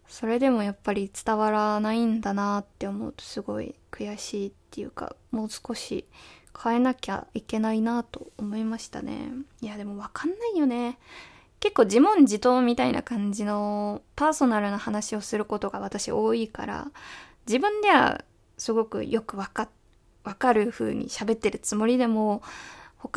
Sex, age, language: female, 20-39, Japanese